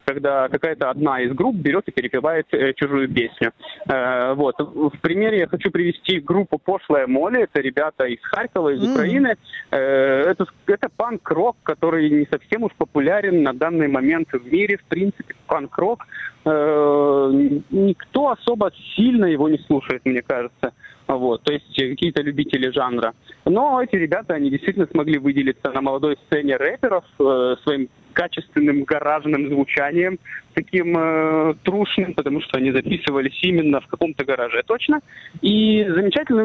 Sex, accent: male, native